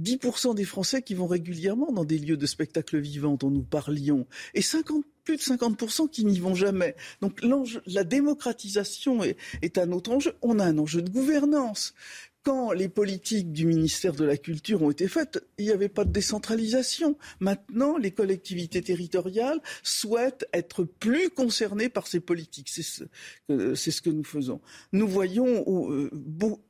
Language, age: French, 50-69